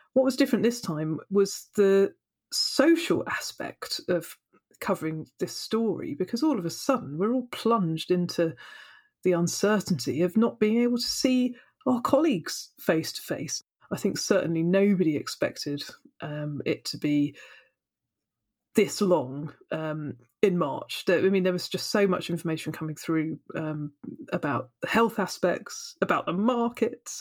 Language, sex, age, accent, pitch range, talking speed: English, female, 40-59, British, 165-215 Hz, 150 wpm